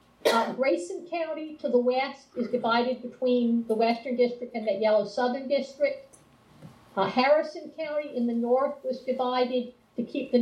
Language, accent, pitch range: English, American, 235-295 Hz